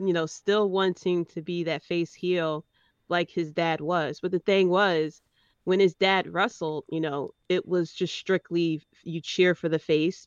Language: English